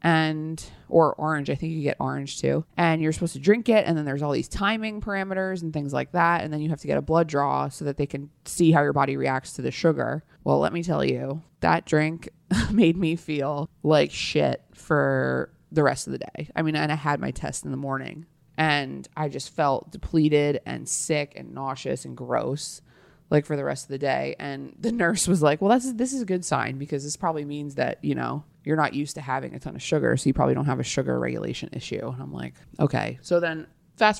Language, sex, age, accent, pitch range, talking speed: English, female, 20-39, American, 135-165 Hz, 240 wpm